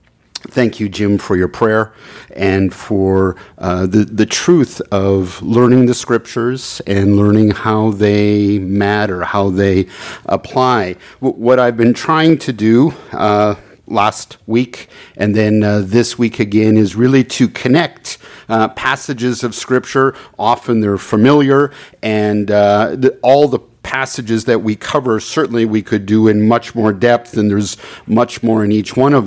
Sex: male